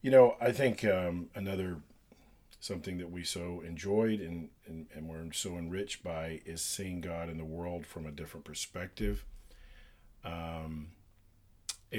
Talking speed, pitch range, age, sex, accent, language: 140 wpm, 85-105 Hz, 40-59, male, American, English